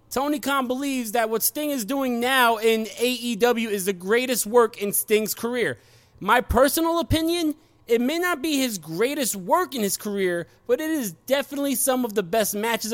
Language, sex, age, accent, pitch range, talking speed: English, male, 20-39, American, 200-245 Hz, 185 wpm